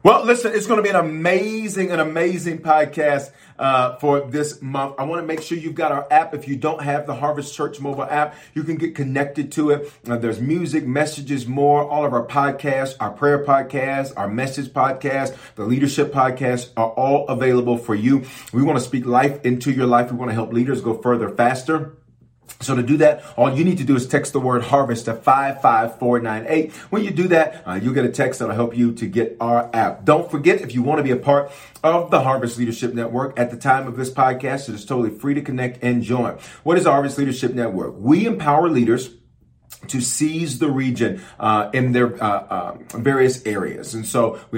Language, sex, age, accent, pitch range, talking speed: English, male, 40-59, American, 120-145 Hz, 215 wpm